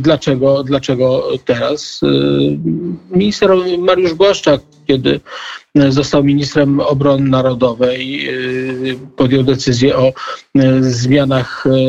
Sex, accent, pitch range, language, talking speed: male, native, 125-145 Hz, Polish, 75 wpm